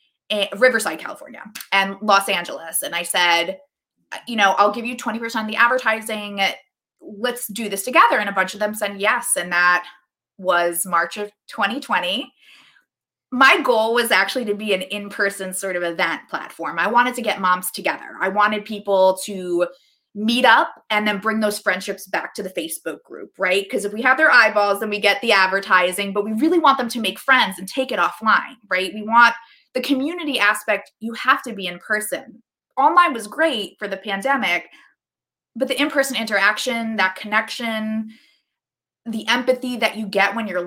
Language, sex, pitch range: English, female, 195-260 Hz